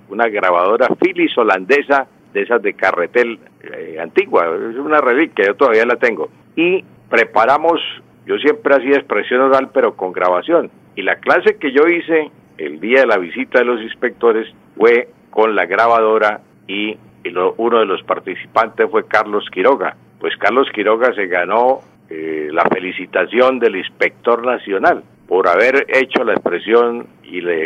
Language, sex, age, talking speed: Spanish, male, 50-69, 155 wpm